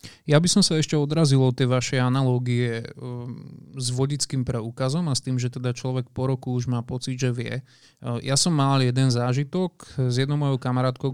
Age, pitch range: 20-39, 125-145 Hz